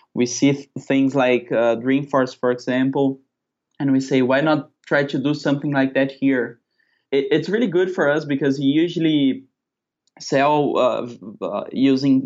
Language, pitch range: English, 130-150 Hz